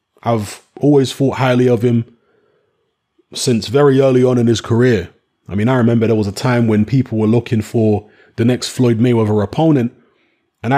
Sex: male